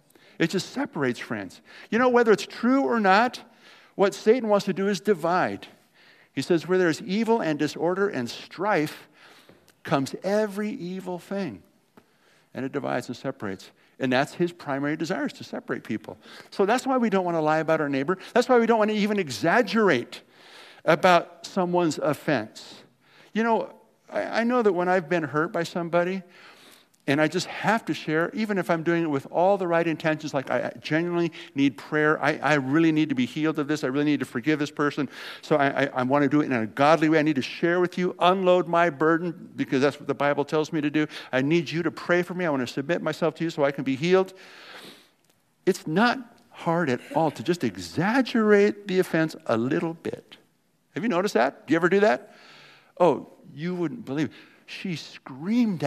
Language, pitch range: English, 150-195 Hz